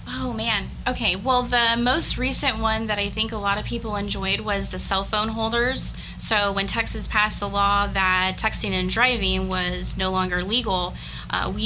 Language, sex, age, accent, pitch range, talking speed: English, female, 20-39, American, 190-225 Hz, 190 wpm